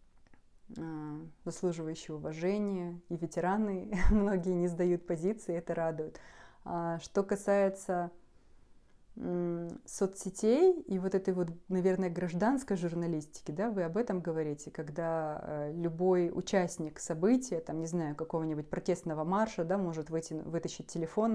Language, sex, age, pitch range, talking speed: Russian, female, 20-39, 160-185 Hz, 110 wpm